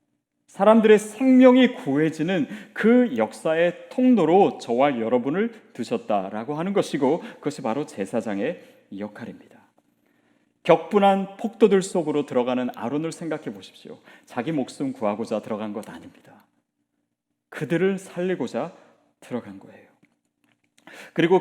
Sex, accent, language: male, native, Korean